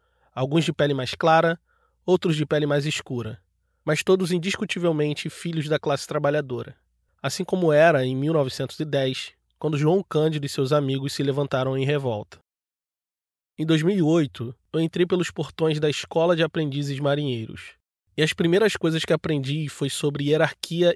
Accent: Brazilian